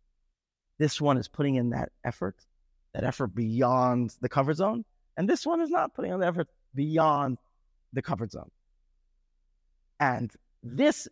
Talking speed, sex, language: 150 wpm, male, English